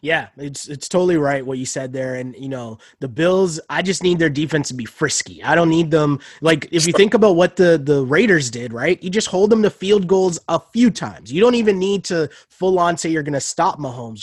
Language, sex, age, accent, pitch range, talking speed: English, male, 20-39, American, 140-175 Hz, 250 wpm